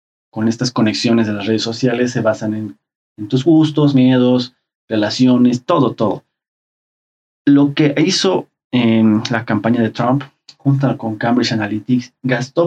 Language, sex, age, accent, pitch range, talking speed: Spanish, male, 30-49, Mexican, 110-135 Hz, 140 wpm